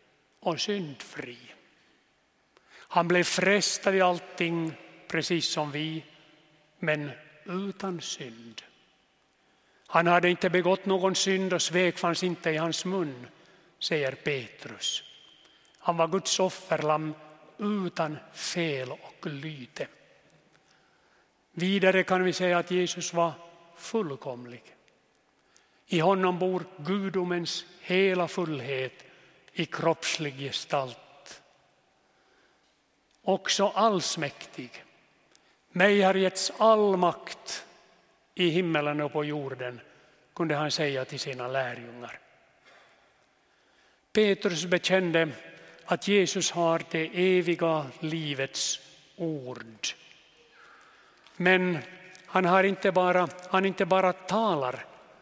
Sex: male